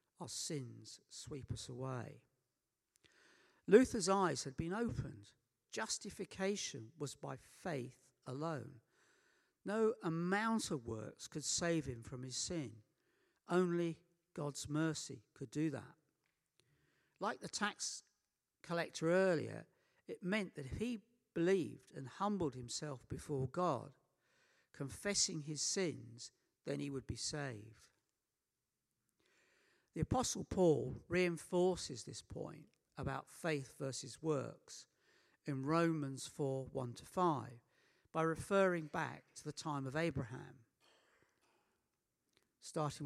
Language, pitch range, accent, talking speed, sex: English, 130-175 Hz, British, 110 wpm, male